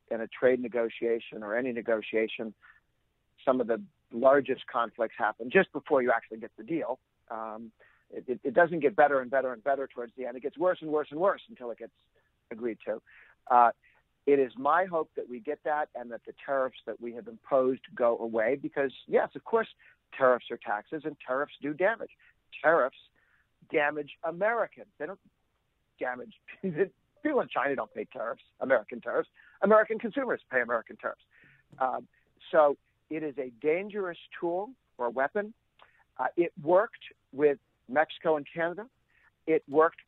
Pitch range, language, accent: 120-155 Hz, English, American